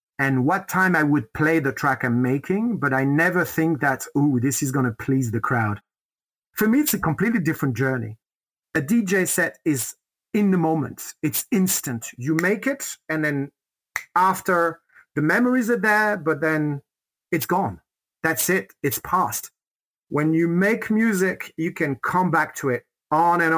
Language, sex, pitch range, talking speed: English, male, 140-180 Hz, 175 wpm